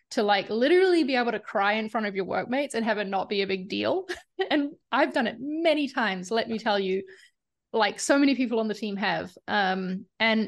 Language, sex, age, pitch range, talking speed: English, female, 20-39, 200-230 Hz, 230 wpm